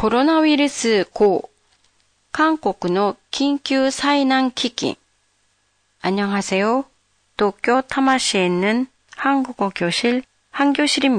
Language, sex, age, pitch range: Japanese, female, 40-59, 185-260 Hz